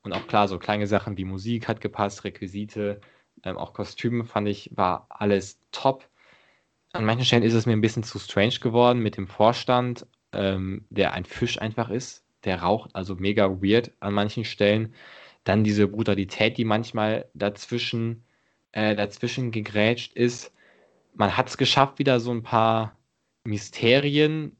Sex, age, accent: male, 20-39, German